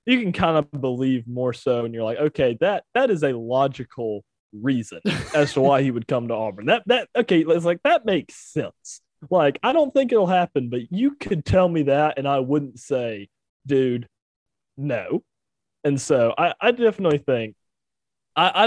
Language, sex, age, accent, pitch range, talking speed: English, male, 20-39, American, 115-145 Hz, 185 wpm